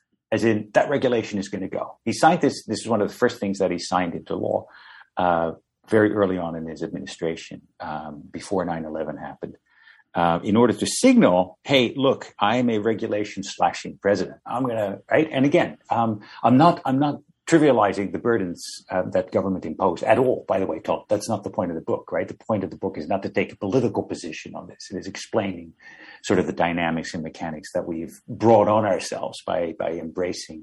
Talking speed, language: 215 wpm, English